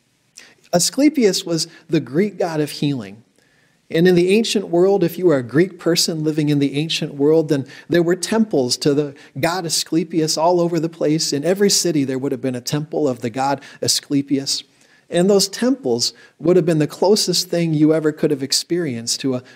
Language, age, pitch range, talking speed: English, 40-59, 145-175 Hz, 195 wpm